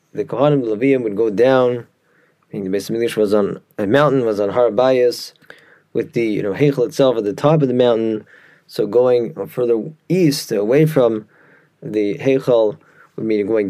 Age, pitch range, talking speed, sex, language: 20-39, 115-150 Hz, 175 wpm, male, English